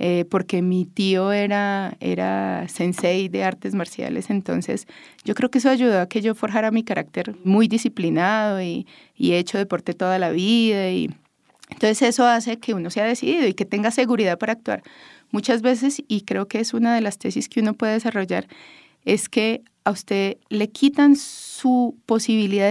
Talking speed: 175 wpm